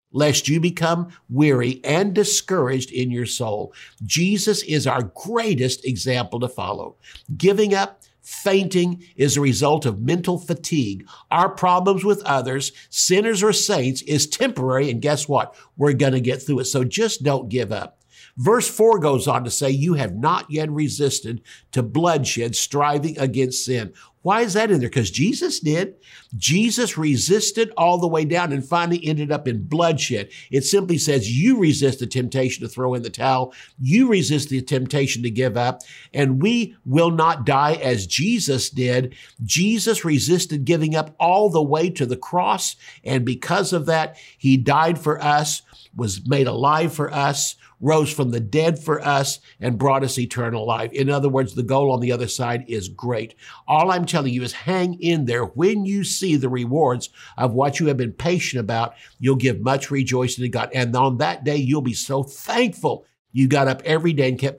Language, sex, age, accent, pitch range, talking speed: English, male, 60-79, American, 125-165 Hz, 180 wpm